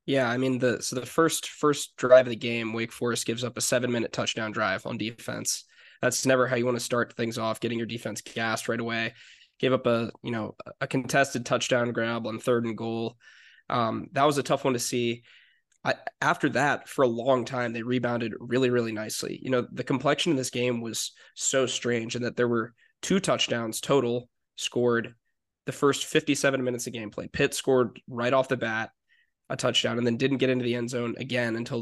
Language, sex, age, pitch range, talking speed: English, male, 20-39, 115-130 Hz, 215 wpm